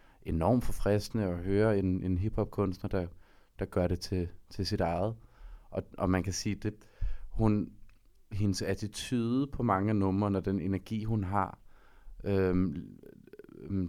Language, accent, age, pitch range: Danish, native, 30-49, 90-110 Hz